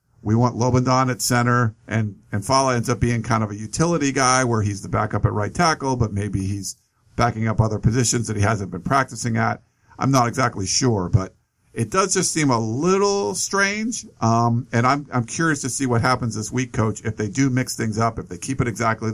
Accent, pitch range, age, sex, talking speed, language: American, 110-130 Hz, 50-69, male, 225 wpm, English